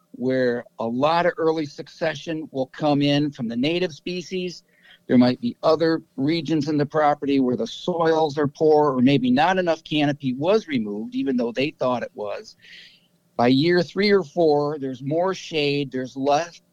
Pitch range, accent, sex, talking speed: 140-180 Hz, American, male, 175 wpm